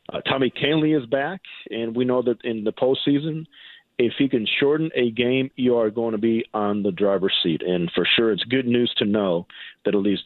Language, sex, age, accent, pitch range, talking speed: English, male, 40-59, American, 105-125 Hz, 220 wpm